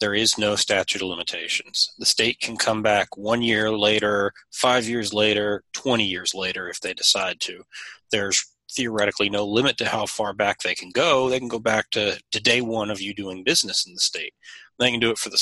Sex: male